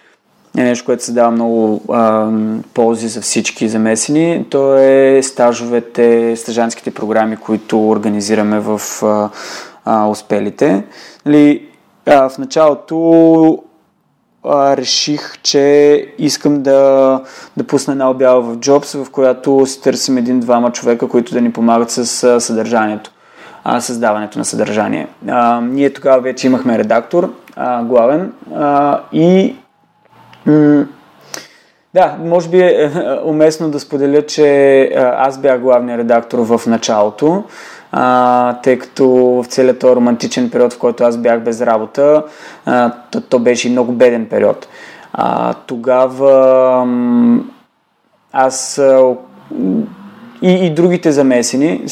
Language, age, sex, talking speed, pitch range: Bulgarian, 20-39, male, 115 wpm, 120-145 Hz